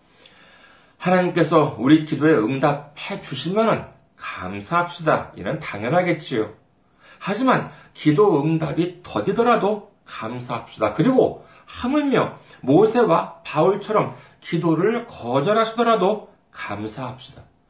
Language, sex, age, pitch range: Korean, male, 40-59, 145-215 Hz